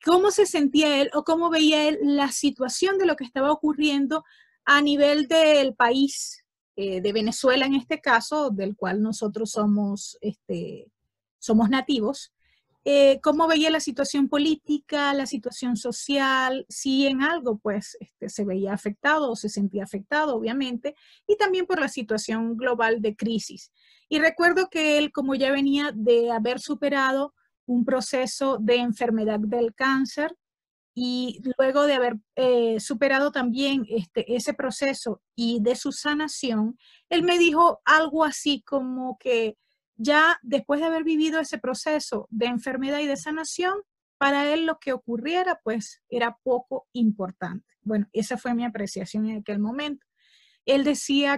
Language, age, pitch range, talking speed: Spanish, 30-49, 235-295 Hz, 155 wpm